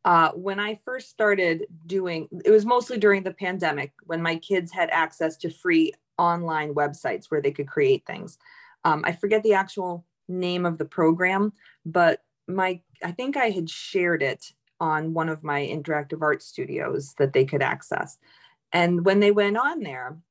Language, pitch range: English, 155-205 Hz